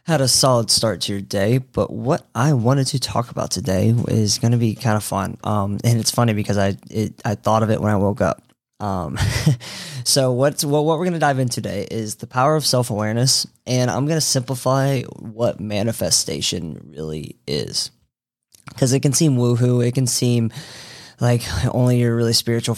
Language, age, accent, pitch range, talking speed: English, 20-39, American, 105-125 Hz, 200 wpm